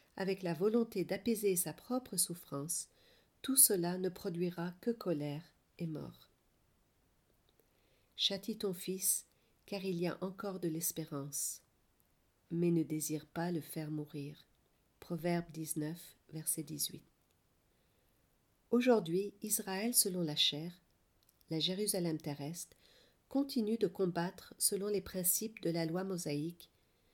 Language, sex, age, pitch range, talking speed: French, female, 40-59, 160-205 Hz, 120 wpm